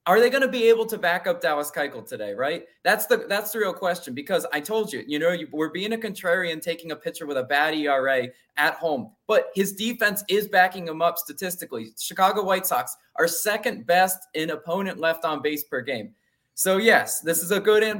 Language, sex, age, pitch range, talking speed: English, male, 20-39, 160-210 Hz, 220 wpm